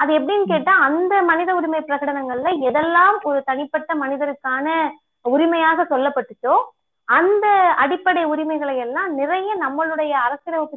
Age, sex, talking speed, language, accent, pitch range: 20-39, female, 110 wpm, Tamil, native, 265-350 Hz